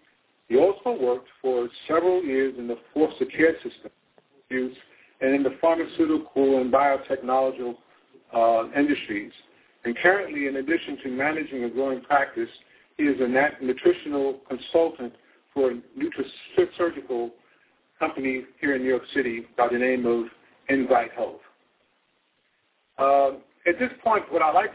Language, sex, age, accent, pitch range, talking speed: English, male, 50-69, American, 130-175 Hz, 135 wpm